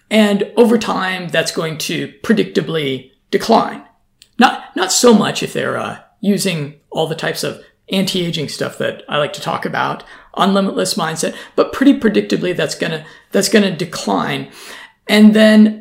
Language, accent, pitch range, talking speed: English, American, 170-215 Hz, 160 wpm